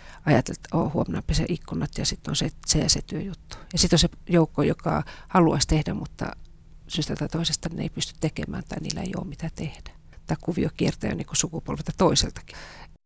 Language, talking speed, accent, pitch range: Finnish, 190 wpm, native, 155-185 Hz